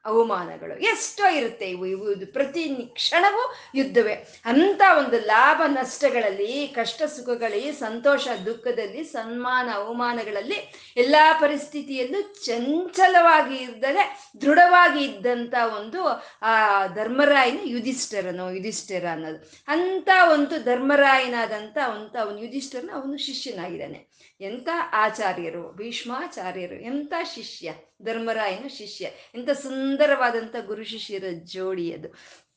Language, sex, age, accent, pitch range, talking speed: Kannada, female, 30-49, native, 210-285 Hz, 90 wpm